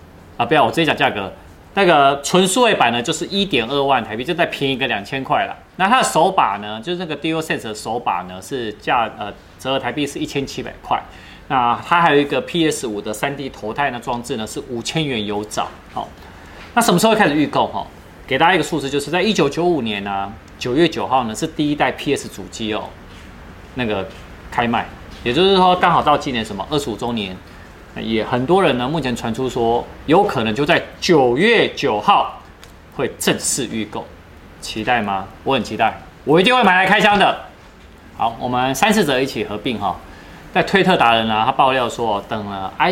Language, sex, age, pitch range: Chinese, male, 20-39, 105-170 Hz